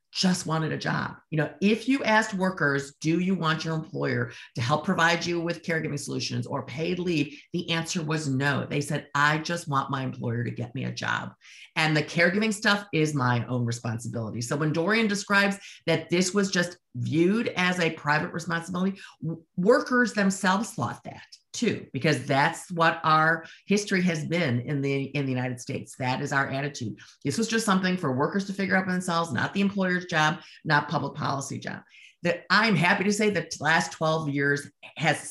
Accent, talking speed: American, 195 wpm